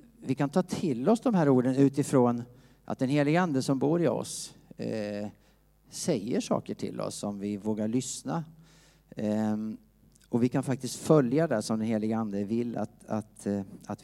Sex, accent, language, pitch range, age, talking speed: male, Norwegian, Swedish, 110-140 Hz, 50-69, 165 wpm